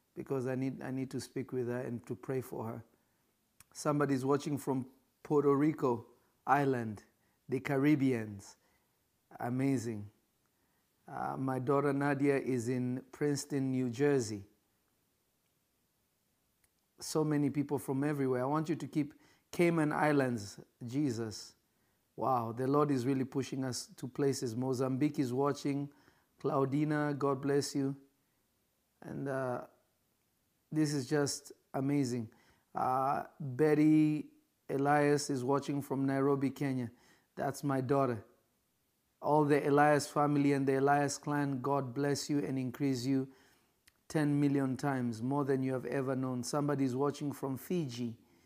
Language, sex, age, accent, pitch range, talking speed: English, male, 50-69, South African, 130-145 Hz, 130 wpm